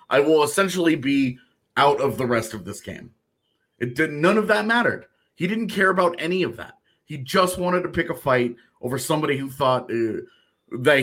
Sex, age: male, 30-49